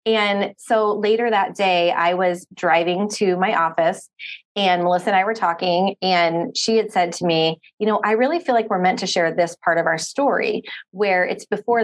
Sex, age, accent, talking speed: female, 30-49, American, 210 wpm